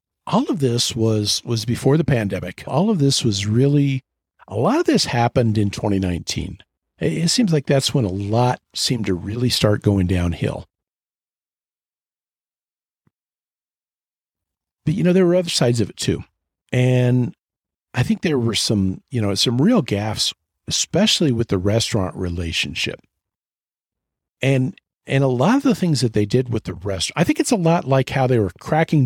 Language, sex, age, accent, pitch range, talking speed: English, male, 50-69, American, 105-140 Hz, 170 wpm